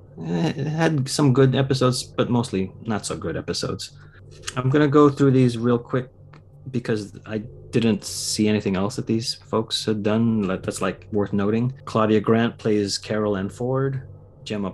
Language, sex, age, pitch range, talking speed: English, male, 30-49, 100-125 Hz, 165 wpm